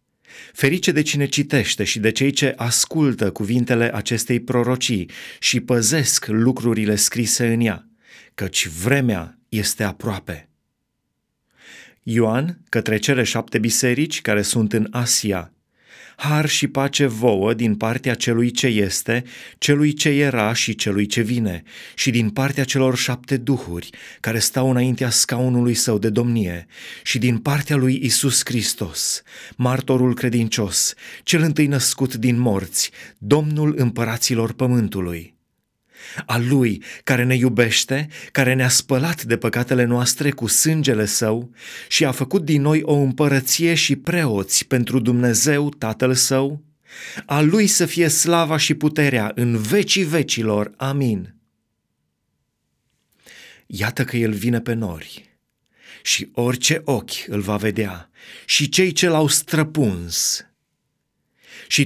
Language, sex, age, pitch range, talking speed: Romanian, male, 30-49, 110-140 Hz, 130 wpm